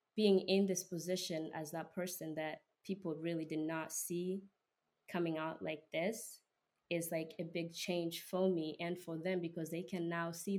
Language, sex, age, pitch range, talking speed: English, female, 20-39, 160-180 Hz, 180 wpm